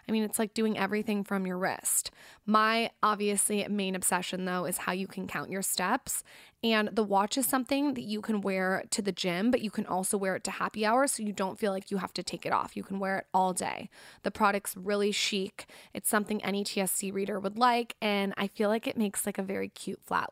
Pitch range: 190-220 Hz